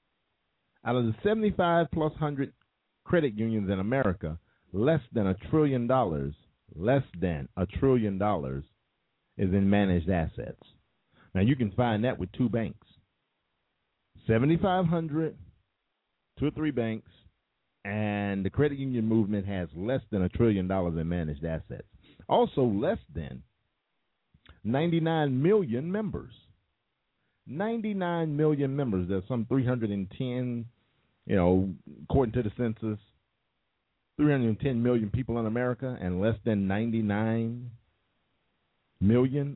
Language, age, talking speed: English, 50-69, 130 wpm